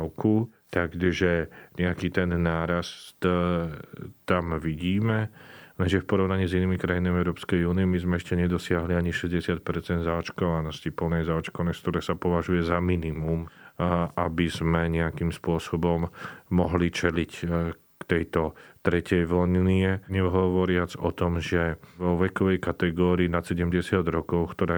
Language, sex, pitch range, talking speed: Slovak, male, 85-90 Hz, 120 wpm